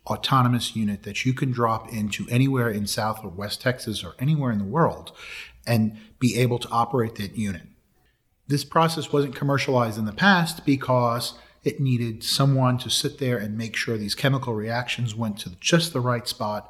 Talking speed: 185 wpm